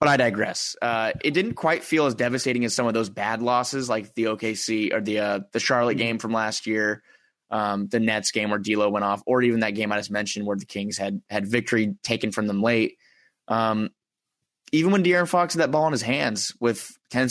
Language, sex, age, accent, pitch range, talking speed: English, male, 20-39, American, 105-130 Hz, 230 wpm